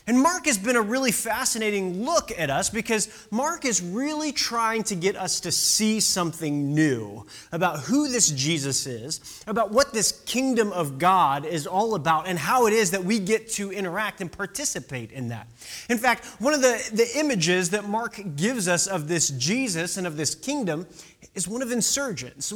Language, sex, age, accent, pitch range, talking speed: English, male, 30-49, American, 160-230 Hz, 190 wpm